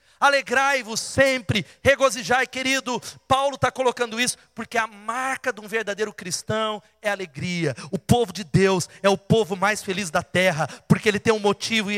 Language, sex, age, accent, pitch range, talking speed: Portuguese, male, 30-49, Brazilian, 175-225 Hz, 175 wpm